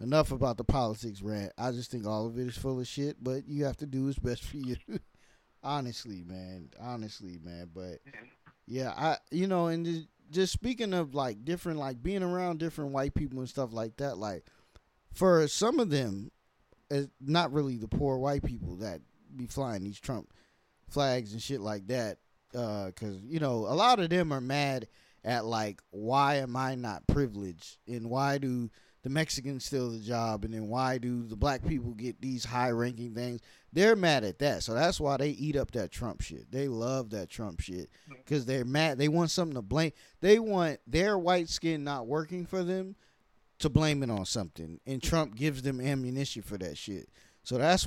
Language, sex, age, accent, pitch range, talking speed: English, male, 20-39, American, 115-150 Hz, 195 wpm